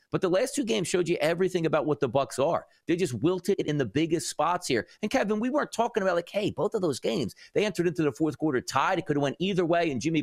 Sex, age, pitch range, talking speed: male, 40-59, 145-220 Hz, 280 wpm